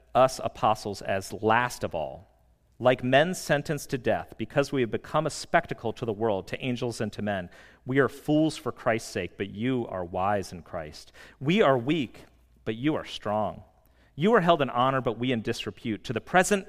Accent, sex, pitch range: American, male, 95-150 Hz